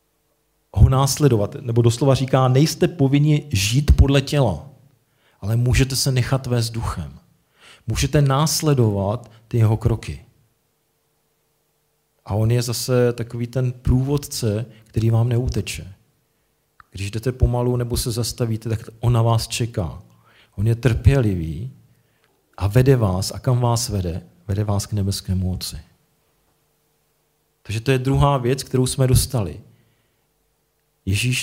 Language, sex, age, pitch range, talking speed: Czech, male, 40-59, 100-125 Hz, 125 wpm